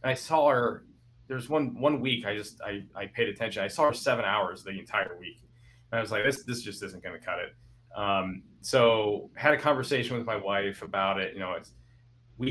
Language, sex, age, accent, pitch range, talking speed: English, male, 30-49, American, 100-125 Hz, 225 wpm